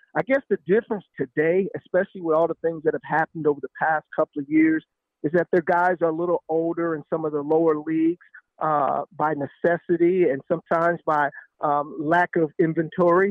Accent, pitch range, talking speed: American, 160-200 Hz, 195 wpm